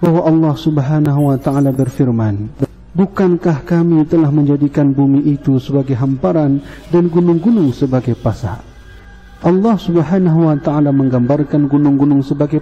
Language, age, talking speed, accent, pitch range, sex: Indonesian, 50-69, 120 wpm, native, 135-165 Hz, male